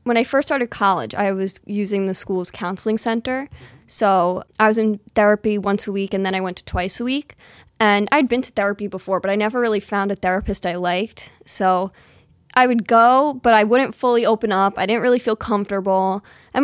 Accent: American